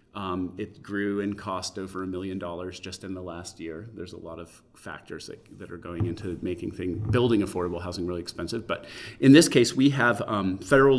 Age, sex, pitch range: 30-49, male, 95-110 Hz